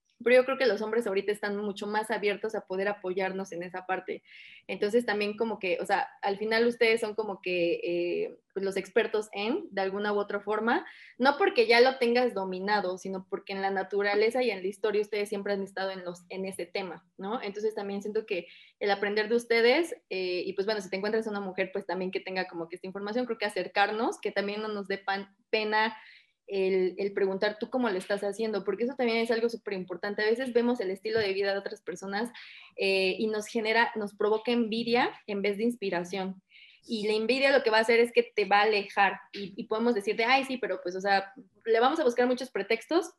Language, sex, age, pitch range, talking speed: Spanish, female, 20-39, 195-230 Hz, 230 wpm